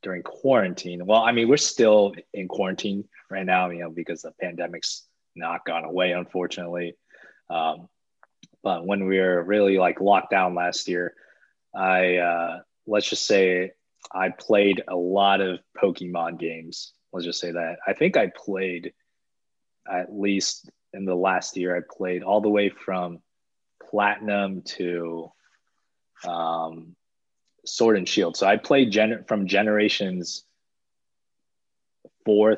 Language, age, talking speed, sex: English, 20-39, 140 wpm, male